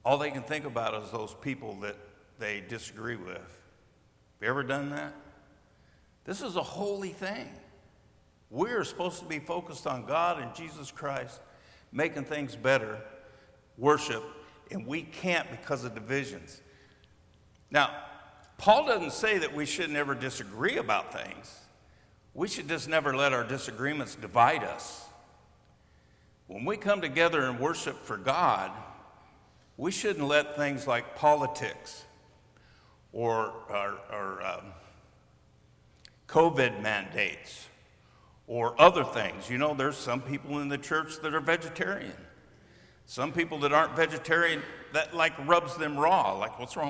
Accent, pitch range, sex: American, 115-160 Hz, male